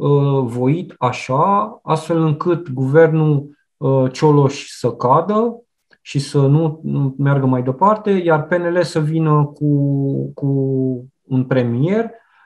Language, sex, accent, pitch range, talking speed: Romanian, male, native, 135-170 Hz, 105 wpm